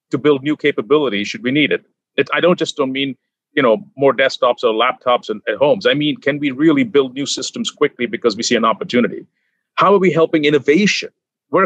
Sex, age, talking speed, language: male, 40-59, 220 wpm, English